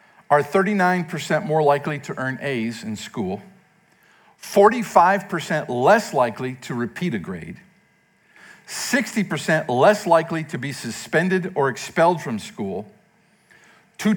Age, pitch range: 50-69, 120-185 Hz